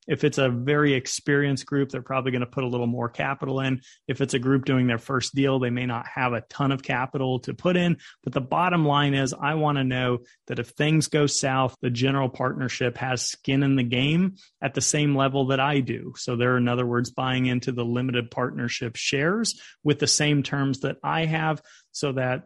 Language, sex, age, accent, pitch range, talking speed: English, male, 30-49, American, 125-145 Hz, 220 wpm